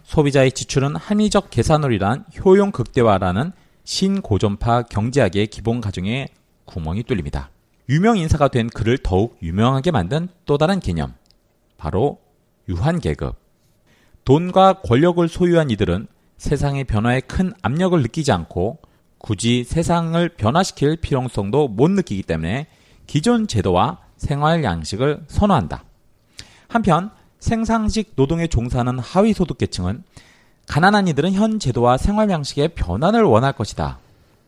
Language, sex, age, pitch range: Korean, male, 40-59, 105-170 Hz